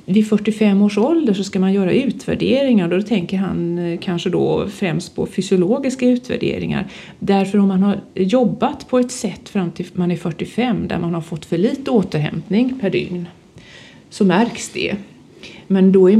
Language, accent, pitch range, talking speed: Swedish, native, 180-225 Hz, 170 wpm